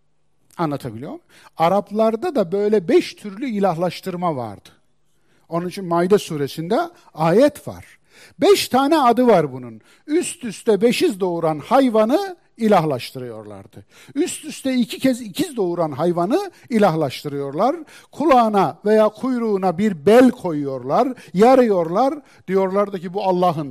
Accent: native